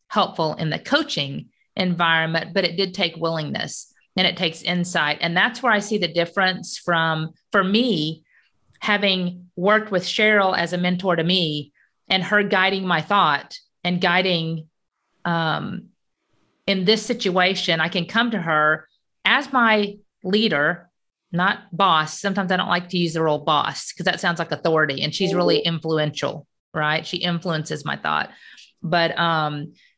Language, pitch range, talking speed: English, 165-205 Hz, 160 wpm